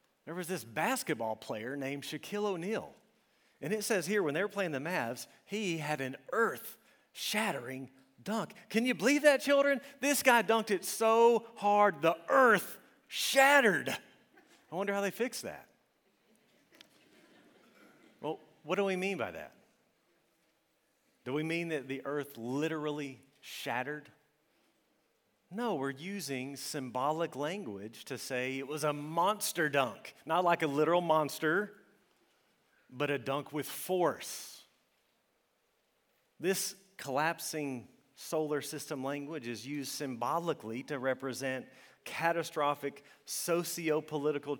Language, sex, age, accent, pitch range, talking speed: English, male, 40-59, American, 140-185 Hz, 125 wpm